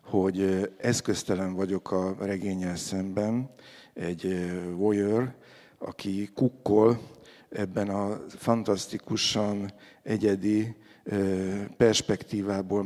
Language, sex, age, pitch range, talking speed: Hungarian, male, 50-69, 95-110 Hz, 70 wpm